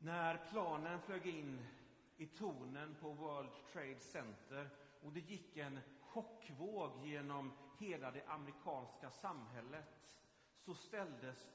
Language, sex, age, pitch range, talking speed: Swedish, male, 40-59, 130-170 Hz, 115 wpm